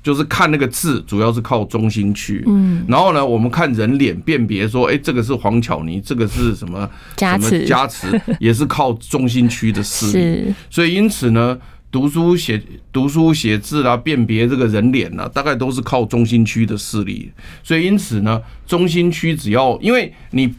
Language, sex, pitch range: Chinese, male, 105-140 Hz